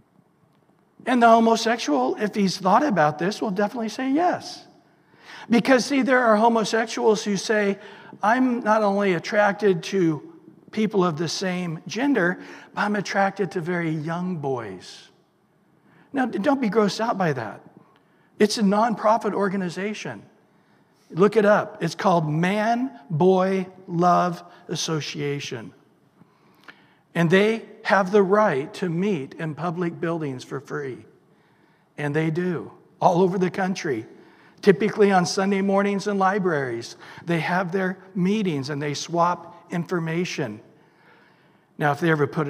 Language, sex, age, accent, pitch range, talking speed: English, male, 60-79, American, 170-215 Hz, 130 wpm